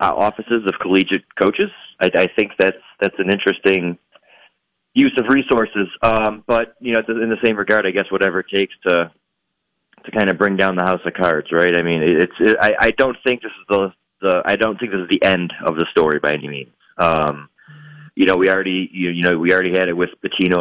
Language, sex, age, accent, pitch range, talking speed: English, male, 30-49, American, 90-105 Hz, 225 wpm